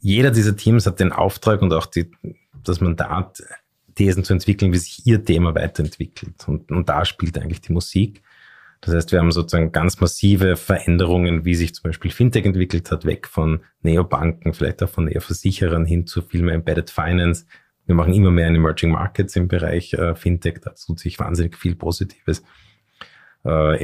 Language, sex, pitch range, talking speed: German, male, 80-95 Hz, 180 wpm